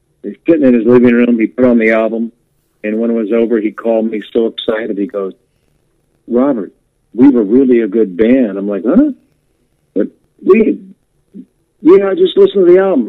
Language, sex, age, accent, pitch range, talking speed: English, male, 50-69, American, 115-185 Hz, 195 wpm